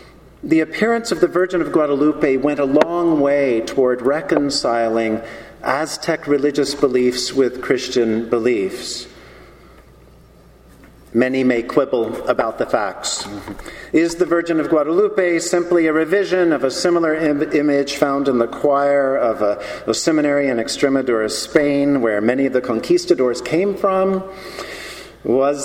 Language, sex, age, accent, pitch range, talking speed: English, male, 50-69, American, 125-180 Hz, 130 wpm